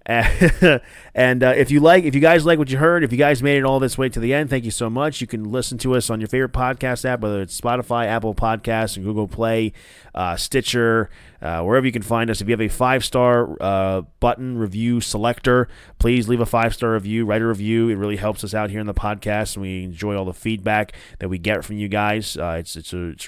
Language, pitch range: English, 105-125 Hz